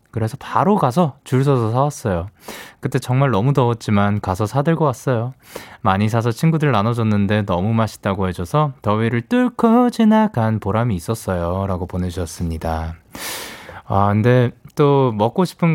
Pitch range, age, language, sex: 100-160 Hz, 20-39, Korean, male